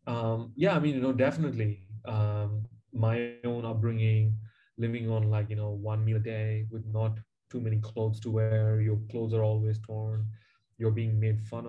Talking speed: 185 wpm